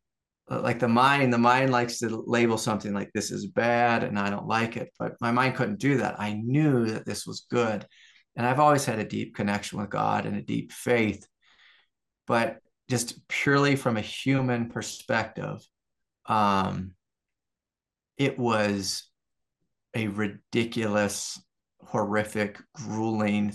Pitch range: 105-135 Hz